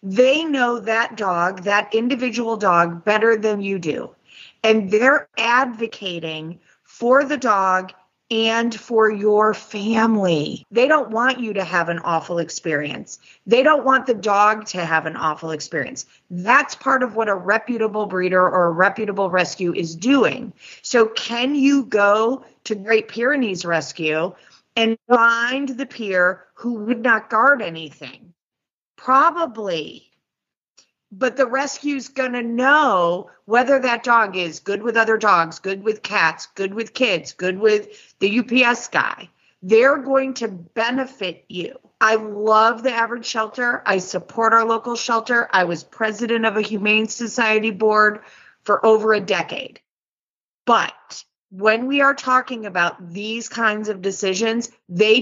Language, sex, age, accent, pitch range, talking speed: English, female, 40-59, American, 190-240 Hz, 145 wpm